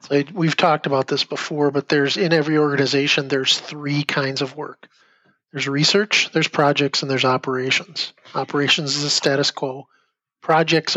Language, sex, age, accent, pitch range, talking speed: English, male, 40-59, American, 135-155 Hz, 155 wpm